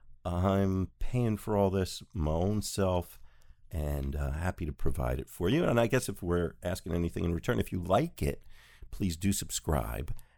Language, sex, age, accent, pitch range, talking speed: English, male, 50-69, American, 70-105 Hz, 185 wpm